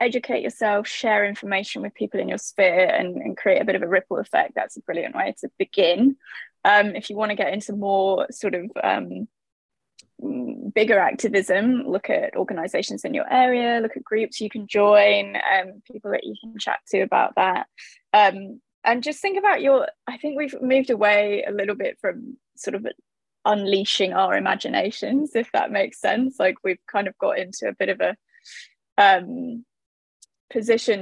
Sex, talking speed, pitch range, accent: female, 180 wpm, 200-260 Hz, British